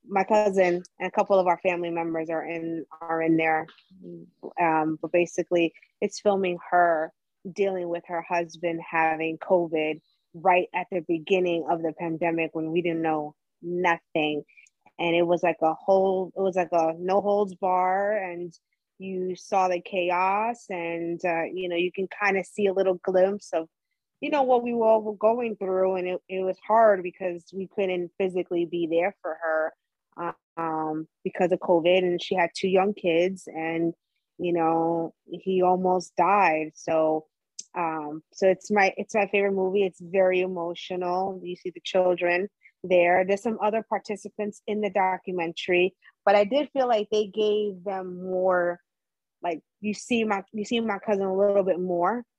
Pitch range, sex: 170-200 Hz, female